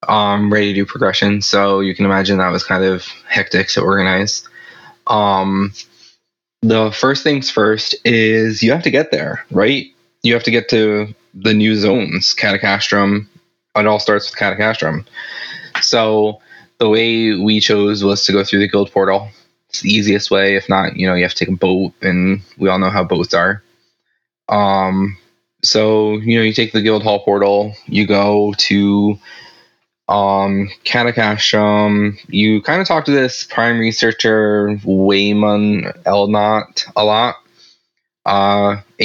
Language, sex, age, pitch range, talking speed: English, male, 20-39, 95-110 Hz, 160 wpm